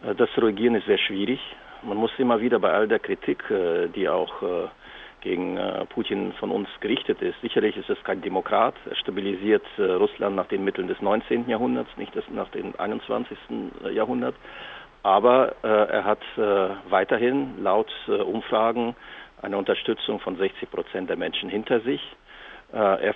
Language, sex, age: German, male, 50-69